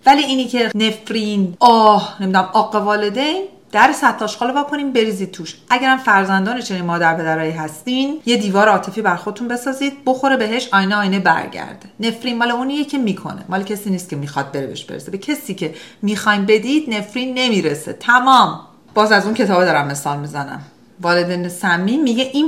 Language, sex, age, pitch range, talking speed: Persian, female, 40-59, 165-235 Hz, 165 wpm